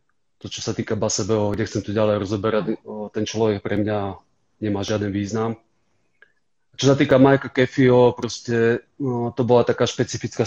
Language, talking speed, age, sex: Slovak, 160 wpm, 30-49, male